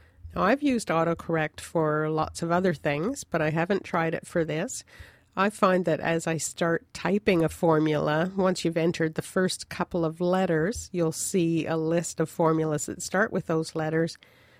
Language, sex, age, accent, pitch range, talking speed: English, female, 50-69, American, 155-180 Hz, 175 wpm